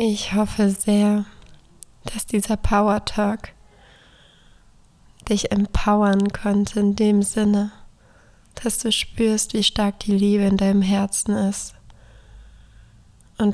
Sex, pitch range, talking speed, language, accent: female, 195-215 Hz, 105 wpm, German, German